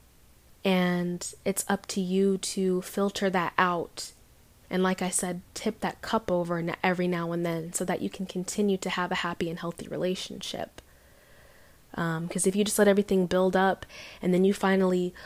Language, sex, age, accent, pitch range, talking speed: English, female, 20-39, American, 185-205 Hz, 180 wpm